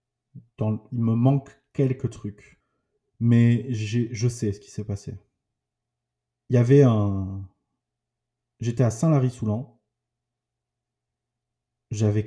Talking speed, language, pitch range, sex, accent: 115 wpm, French, 100-125 Hz, male, French